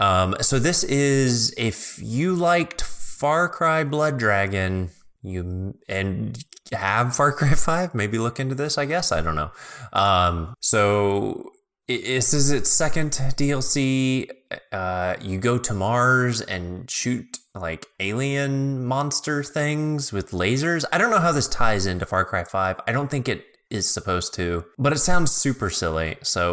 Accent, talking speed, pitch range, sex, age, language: American, 160 wpm, 95-140 Hz, male, 20-39, English